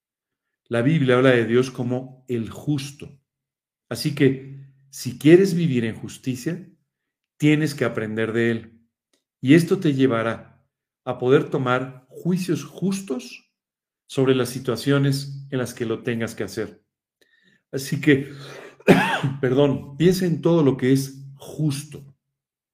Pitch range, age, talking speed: 125-155 Hz, 50-69, 130 wpm